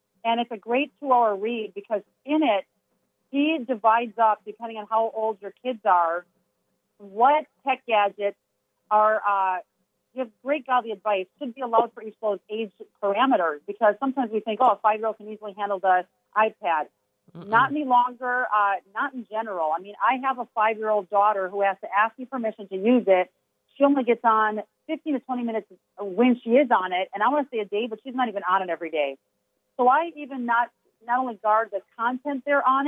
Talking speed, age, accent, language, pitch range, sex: 205 wpm, 40-59, American, English, 200-245 Hz, female